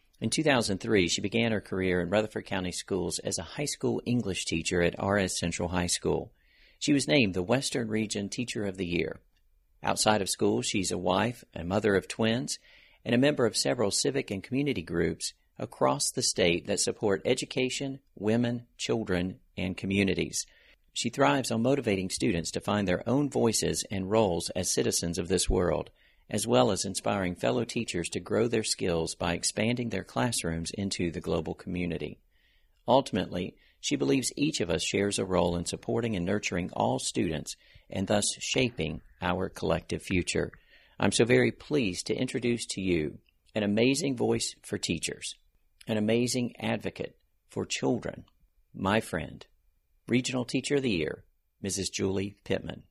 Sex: male